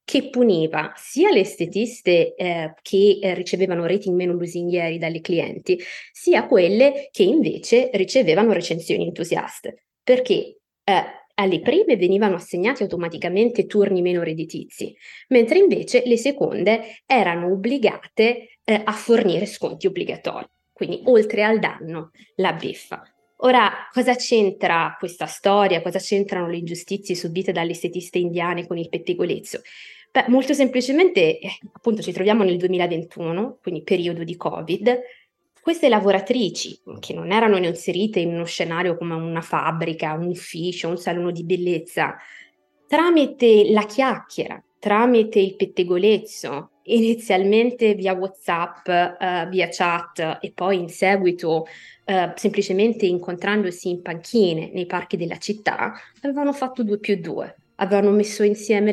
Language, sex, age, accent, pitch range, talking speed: Italian, female, 20-39, native, 175-230 Hz, 130 wpm